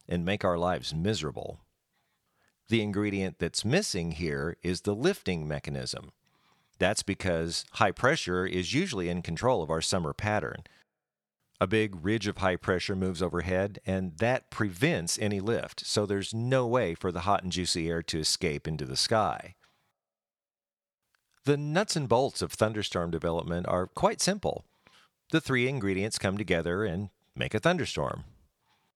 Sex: male